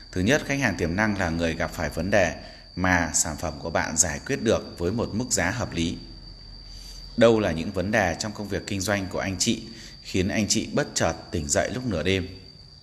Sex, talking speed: male, 230 wpm